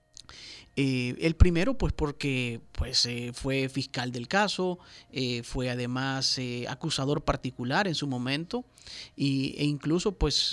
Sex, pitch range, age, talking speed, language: male, 130-155 Hz, 40-59, 125 wpm, Spanish